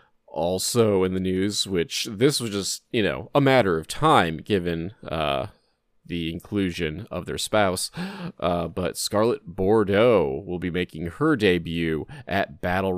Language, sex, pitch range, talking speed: English, male, 85-105 Hz, 150 wpm